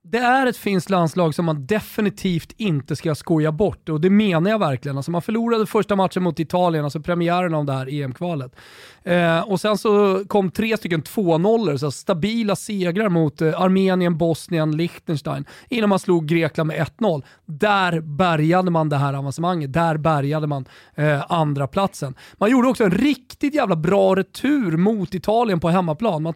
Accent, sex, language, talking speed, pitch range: native, male, Swedish, 175 wpm, 160-210 Hz